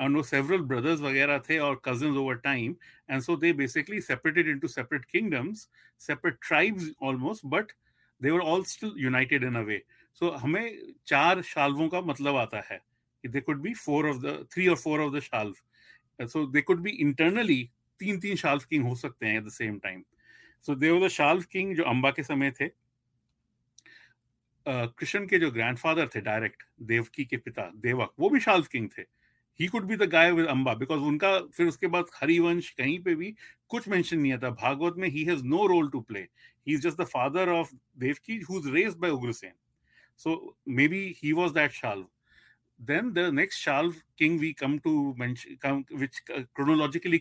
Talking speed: 70 wpm